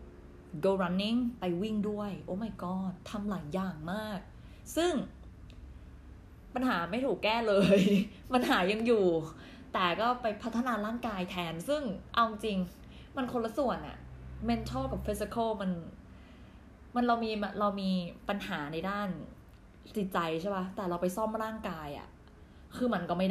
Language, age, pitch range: Thai, 20-39, 165-220 Hz